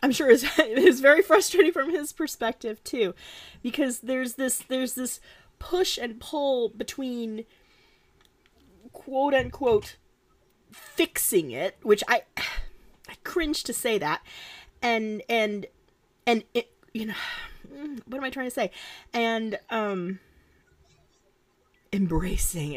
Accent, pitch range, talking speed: American, 205-270 Hz, 120 wpm